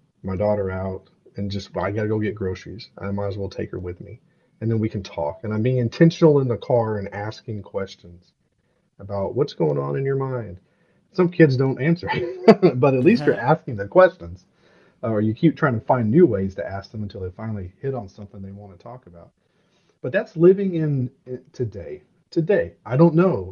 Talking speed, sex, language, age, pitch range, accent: 210 wpm, male, English, 40-59, 95-150 Hz, American